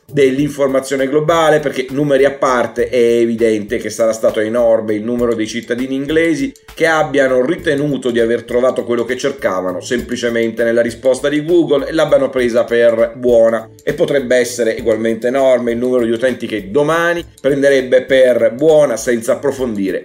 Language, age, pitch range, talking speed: Italian, 40-59, 115-140 Hz, 155 wpm